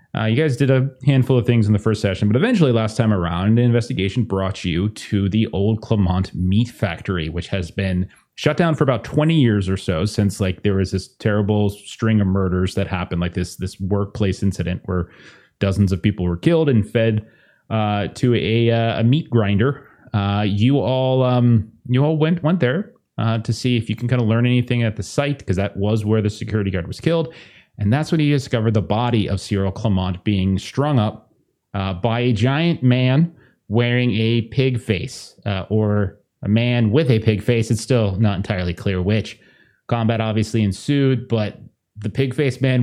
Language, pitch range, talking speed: English, 100-130 Hz, 200 wpm